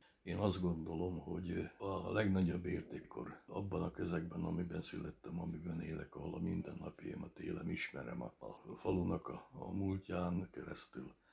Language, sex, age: Hungarian, male, 60-79